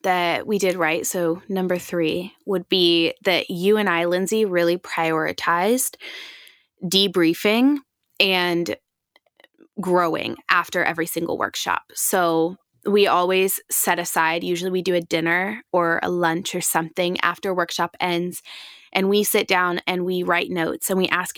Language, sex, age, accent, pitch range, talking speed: English, female, 20-39, American, 175-210 Hz, 145 wpm